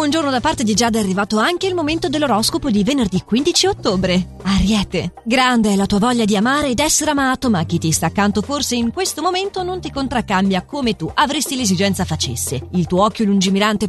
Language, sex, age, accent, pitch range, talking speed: Italian, female, 30-49, native, 185-280 Hz, 205 wpm